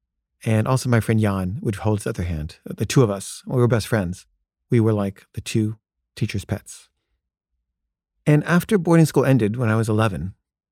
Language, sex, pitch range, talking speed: English, male, 100-135 Hz, 190 wpm